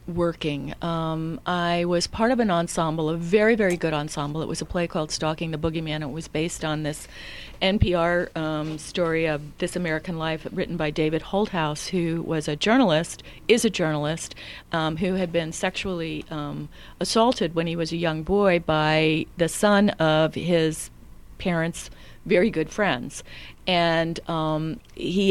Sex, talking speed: female, 165 wpm